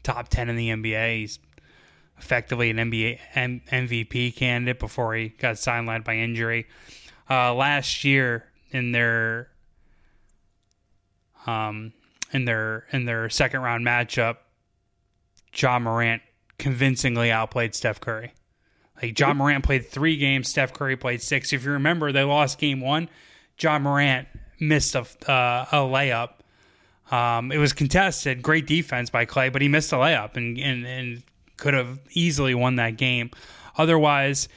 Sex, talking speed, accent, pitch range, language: male, 145 wpm, American, 115-145 Hz, English